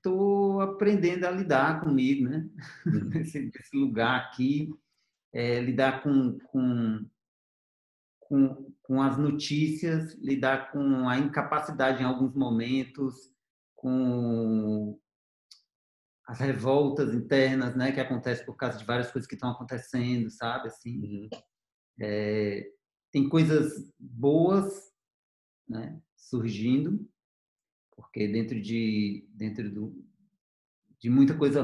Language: Portuguese